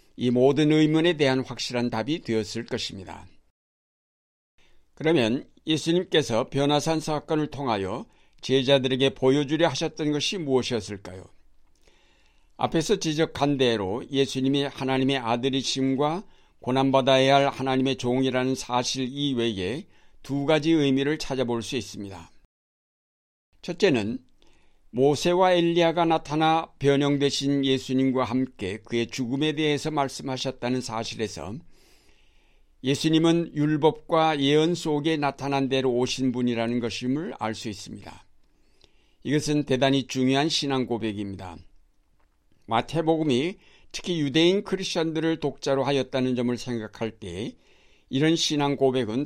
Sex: male